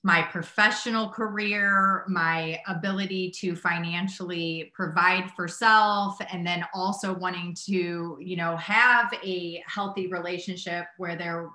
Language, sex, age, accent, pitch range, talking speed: English, female, 30-49, American, 170-195 Hz, 120 wpm